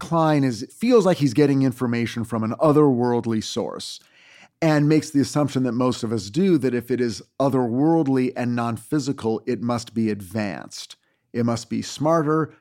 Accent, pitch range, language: American, 120-150 Hz, English